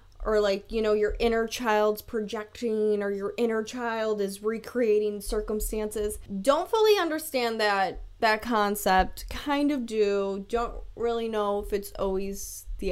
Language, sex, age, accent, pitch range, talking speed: English, female, 10-29, American, 200-235 Hz, 145 wpm